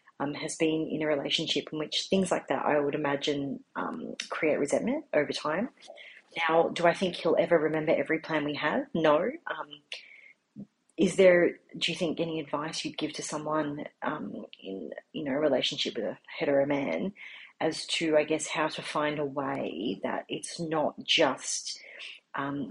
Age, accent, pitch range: 30-49, Australian, 150-180 Hz